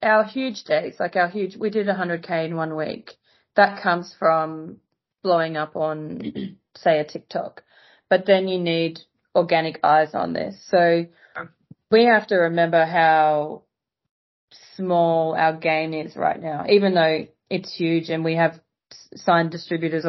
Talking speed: 150 wpm